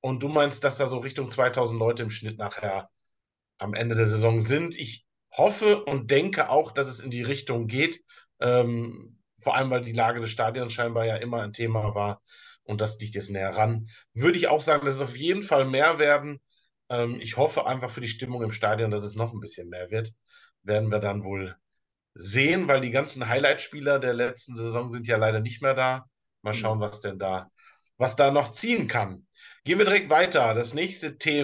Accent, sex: German, male